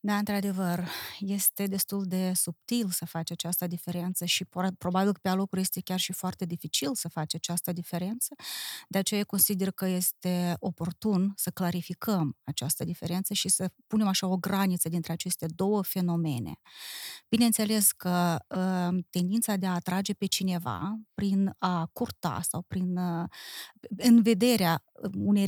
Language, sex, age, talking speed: Romanian, female, 30-49, 140 wpm